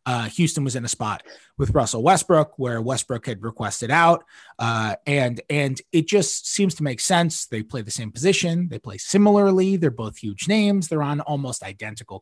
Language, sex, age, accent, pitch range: Japanese, male, 20-39, American, 125-170 Hz